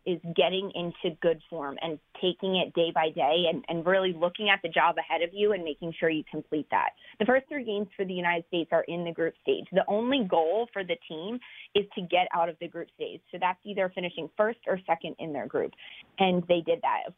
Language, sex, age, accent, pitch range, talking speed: English, female, 30-49, American, 165-200 Hz, 240 wpm